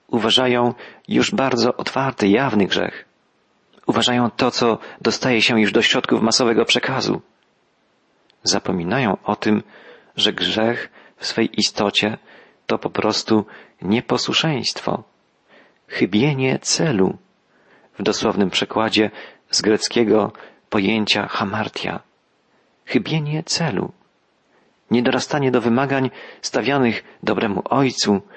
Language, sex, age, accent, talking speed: Polish, male, 40-59, native, 95 wpm